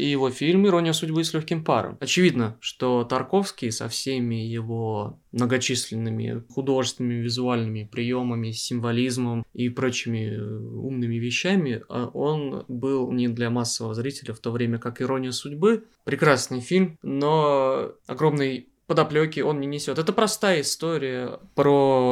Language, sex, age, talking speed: Russian, male, 20-39, 130 wpm